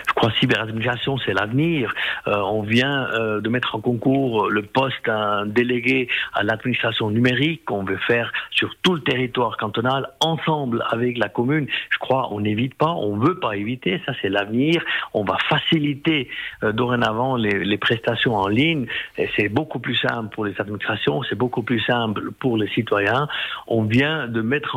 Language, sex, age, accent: French, male, 50-69, French